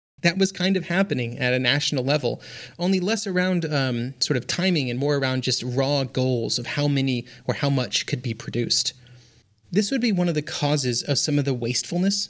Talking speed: 210 wpm